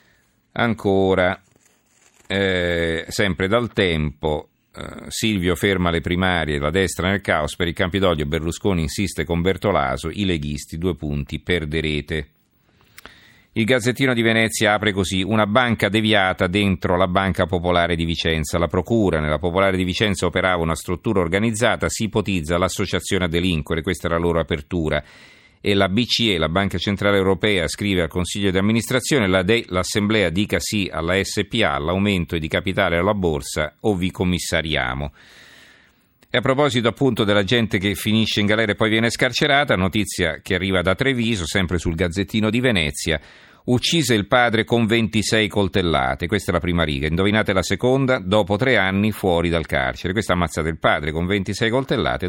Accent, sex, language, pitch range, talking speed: native, male, Italian, 85-110 Hz, 155 wpm